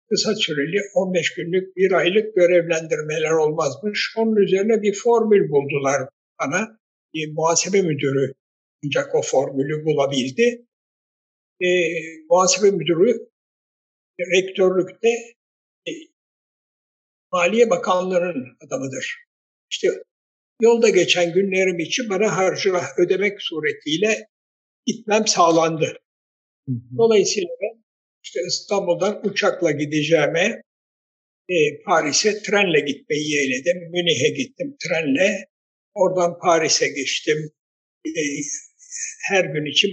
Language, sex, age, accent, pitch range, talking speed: Turkish, male, 60-79, native, 160-215 Hz, 95 wpm